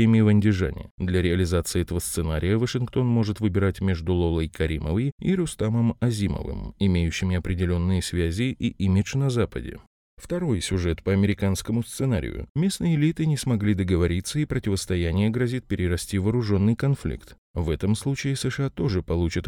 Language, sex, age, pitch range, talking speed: Russian, male, 20-39, 90-120 Hz, 135 wpm